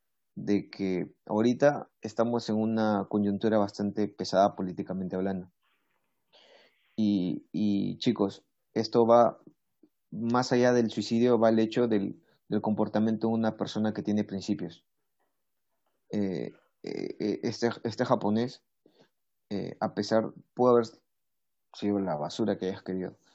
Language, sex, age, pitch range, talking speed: Spanish, male, 30-49, 100-115 Hz, 125 wpm